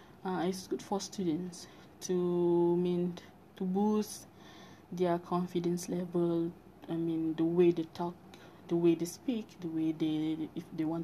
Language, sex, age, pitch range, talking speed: English, female, 20-39, 175-240 Hz, 160 wpm